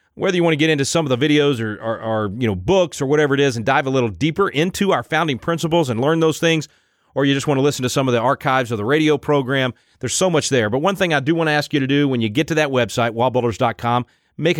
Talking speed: 290 wpm